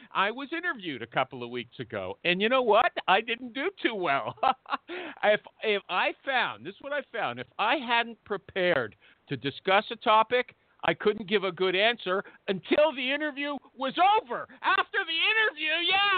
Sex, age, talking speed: male, 50-69, 180 wpm